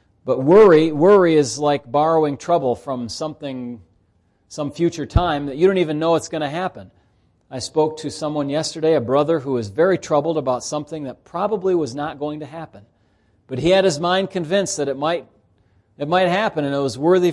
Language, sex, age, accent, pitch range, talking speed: English, male, 40-59, American, 110-150 Hz, 195 wpm